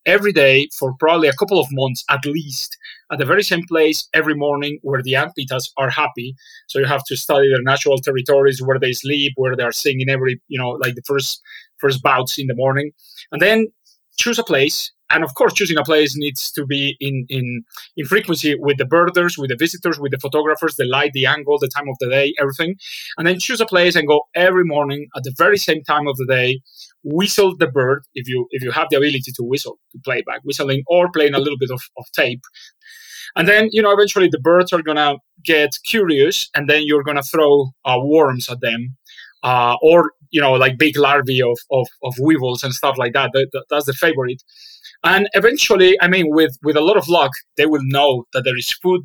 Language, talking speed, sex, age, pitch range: English, 225 wpm, male, 30-49, 135-170 Hz